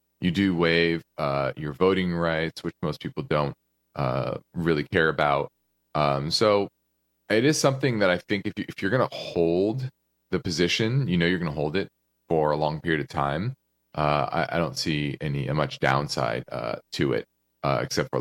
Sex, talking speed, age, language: male, 190 wpm, 30-49, English